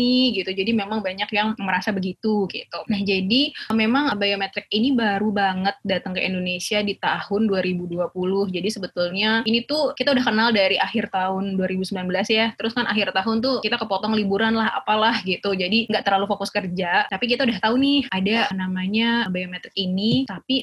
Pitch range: 195-230 Hz